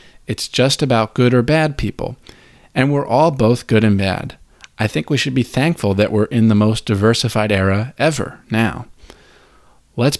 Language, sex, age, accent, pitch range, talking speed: English, male, 40-59, American, 100-130 Hz, 175 wpm